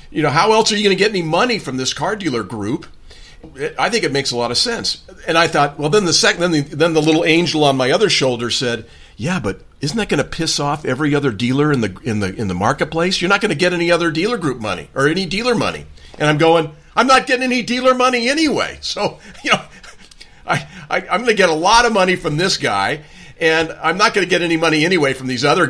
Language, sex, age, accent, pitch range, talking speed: English, male, 40-59, American, 135-175 Hz, 260 wpm